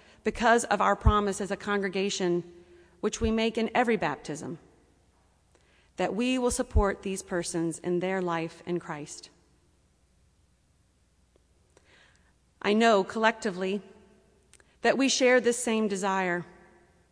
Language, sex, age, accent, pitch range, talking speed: English, female, 40-59, American, 175-235 Hz, 115 wpm